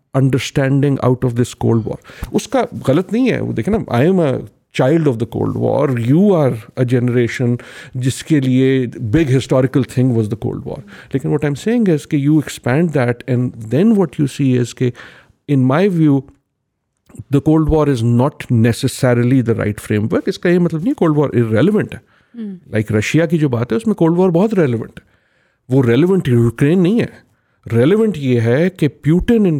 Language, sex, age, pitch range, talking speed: Urdu, male, 50-69, 125-175 Hz, 180 wpm